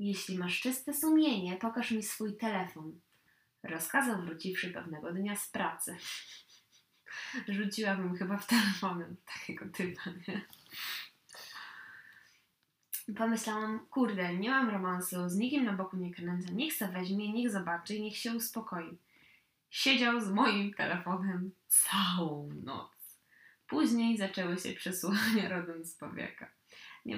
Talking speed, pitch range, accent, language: 120 wpm, 180-220 Hz, native, Polish